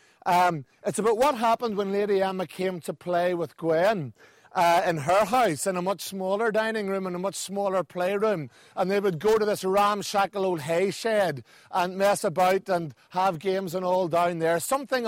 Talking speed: 195 wpm